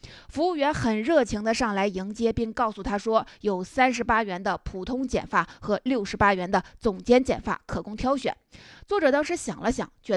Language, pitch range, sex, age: Chinese, 200-255 Hz, female, 20-39